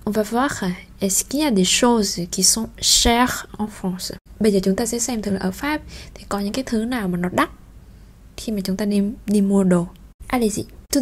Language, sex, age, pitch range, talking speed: Vietnamese, female, 20-39, 190-230 Hz, 235 wpm